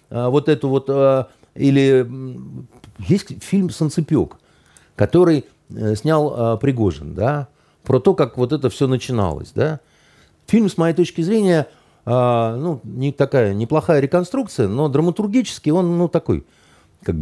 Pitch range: 100-150 Hz